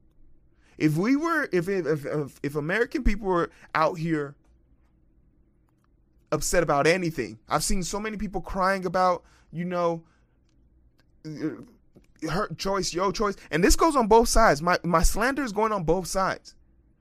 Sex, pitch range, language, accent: male, 130-195 Hz, English, American